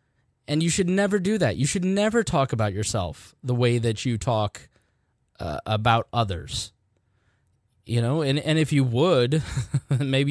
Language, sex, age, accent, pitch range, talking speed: English, male, 20-39, American, 110-145 Hz, 165 wpm